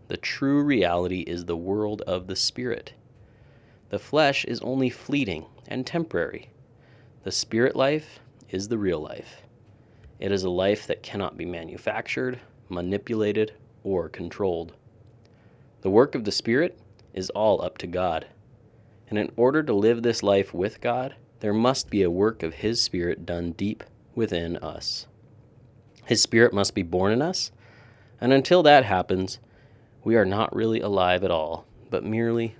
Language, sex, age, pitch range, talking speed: English, male, 30-49, 100-120 Hz, 155 wpm